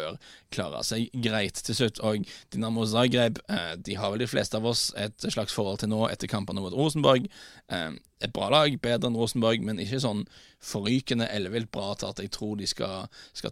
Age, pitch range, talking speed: 20-39, 100-120 Hz, 190 wpm